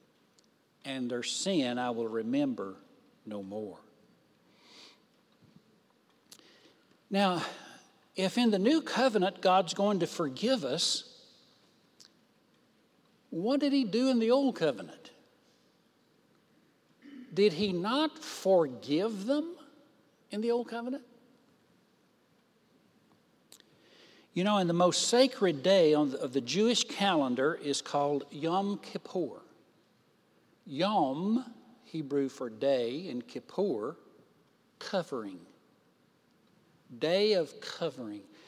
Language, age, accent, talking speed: English, 60-79, American, 95 wpm